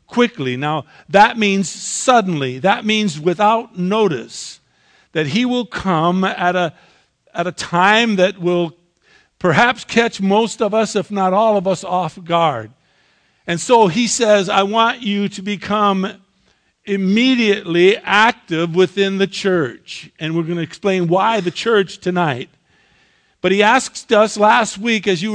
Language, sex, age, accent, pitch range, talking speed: English, male, 50-69, American, 165-210 Hz, 145 wpm